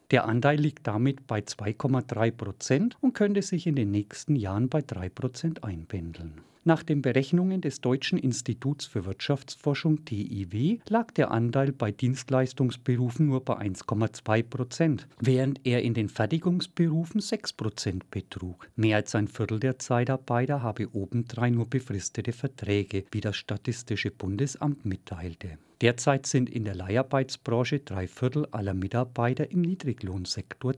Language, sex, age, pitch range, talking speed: German, male, 50-69, 100-135 Hz, 135 wpm